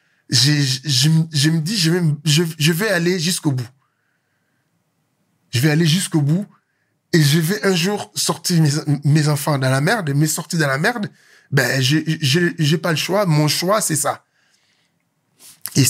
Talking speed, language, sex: 185 wpm, French, male